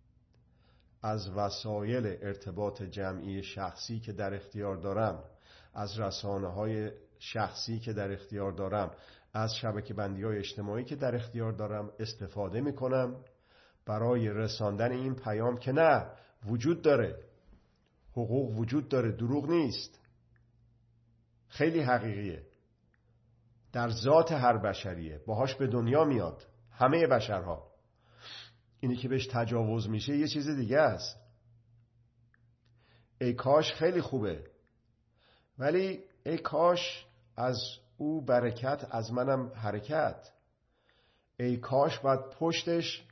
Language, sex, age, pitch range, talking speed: Persian, male, 50-69, 105-130 Hz, 105 wpm